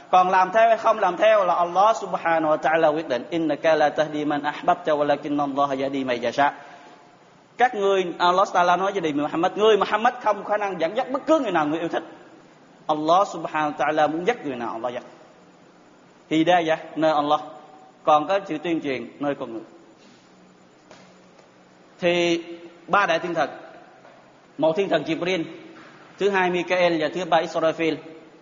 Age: 30-49